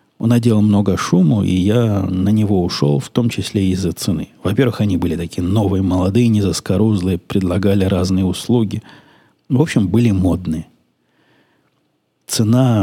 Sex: male